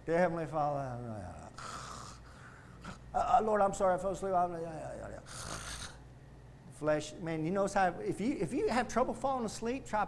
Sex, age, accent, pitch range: male, 40-59, American, 130-180 Hz